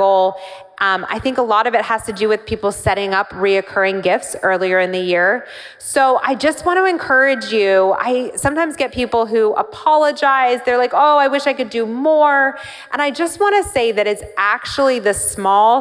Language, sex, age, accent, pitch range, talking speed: English, female, 30-49, American, 190-245 Hz, 200 wpm